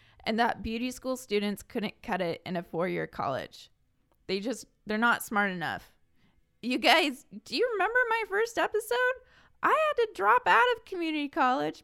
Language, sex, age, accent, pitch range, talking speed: English, female, 20-39, American, 205-285 Hz, 170 wpm